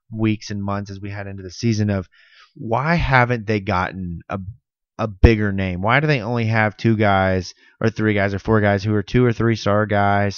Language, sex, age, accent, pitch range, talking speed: English, male, 20-39, American, 100-120 Hz, 220 wpm